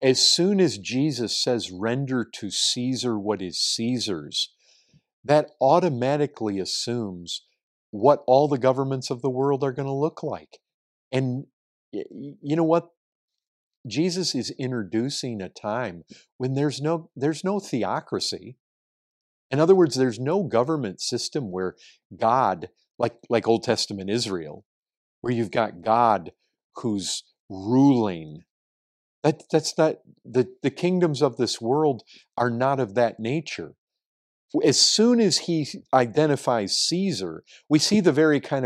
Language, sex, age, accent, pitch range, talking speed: English, male, 50-69, American, 120-165 Hz, 135 wpm